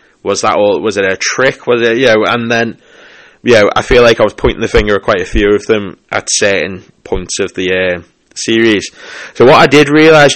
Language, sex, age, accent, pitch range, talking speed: English, male, 20-39, British, 100-115 Hz, 235 wpm